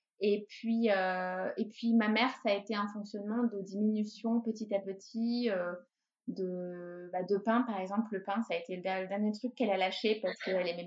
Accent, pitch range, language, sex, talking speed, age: French, 195-230 Hz, French, female, 220 wpm, 20-39